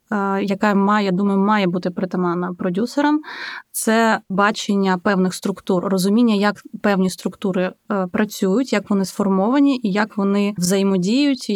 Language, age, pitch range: Ukrainian, 20-39, 185-220 Hz